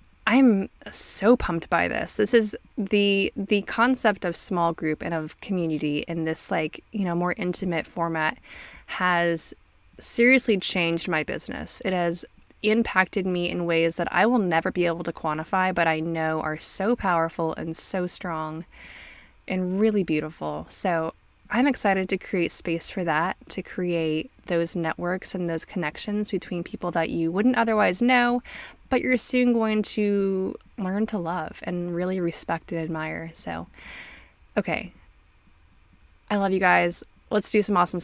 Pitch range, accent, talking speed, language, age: 165-210 Hz, American, 160 wpm, English, 20-39